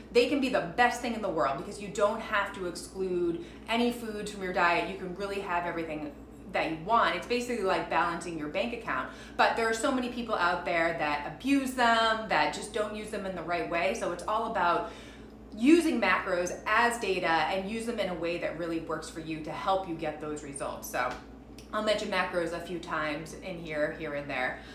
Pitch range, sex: 165-215 Hz, female